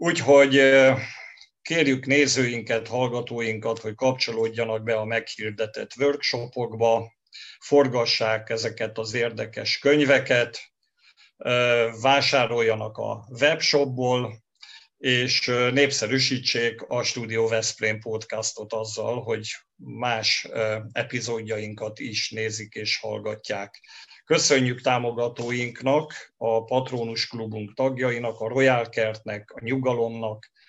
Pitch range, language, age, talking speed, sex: 110-130 Hz, Hungarian, 50-69, 85 wpm, male